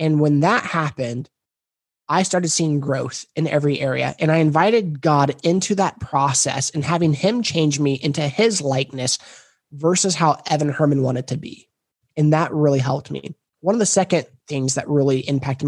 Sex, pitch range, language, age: male, 140-170 Hz, English, 20-39